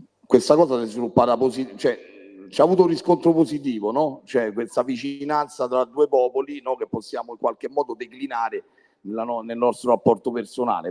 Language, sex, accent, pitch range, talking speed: Italian, male, native, 120-160 Hz, 165 wpm